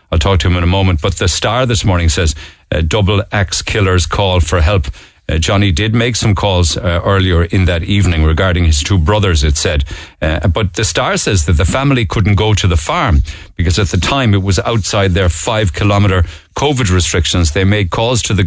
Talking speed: 220 wpm